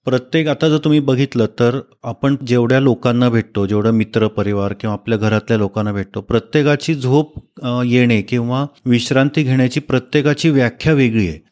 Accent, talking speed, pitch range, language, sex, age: native, 140 wpm, 115-135 Hz, Marathi, male, 30-49